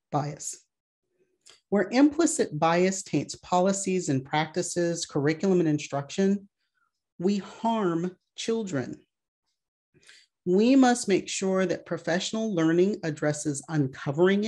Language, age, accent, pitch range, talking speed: English, 40-59, American, 150-195 Hz, 95 wpm